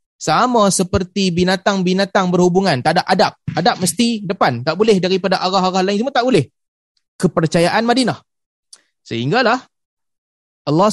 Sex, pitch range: male, 150-200 Hz